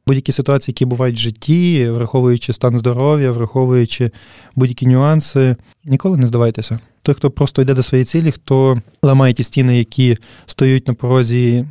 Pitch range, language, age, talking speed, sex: 125-145 Hz, Ukrainian, 20-39, 155 wpm, male